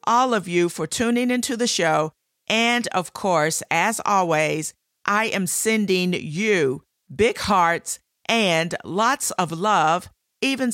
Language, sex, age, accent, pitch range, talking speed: English, female, 50-69, American, 165-205 Hz, 135 wpm